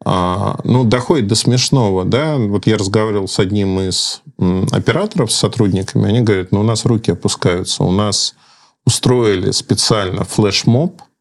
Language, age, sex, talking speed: Russian, 40-59, male, 140 wpm